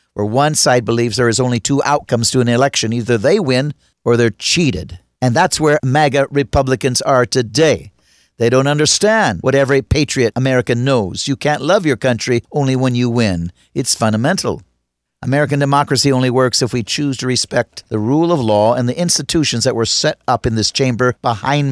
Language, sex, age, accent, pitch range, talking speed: English, male, 50-69, American, 115-145 Hz, 190 wpm